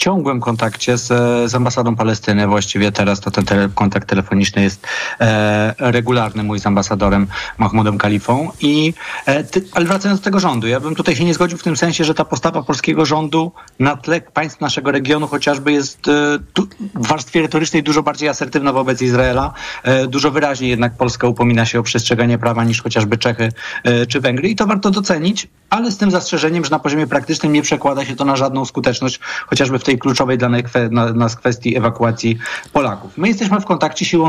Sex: male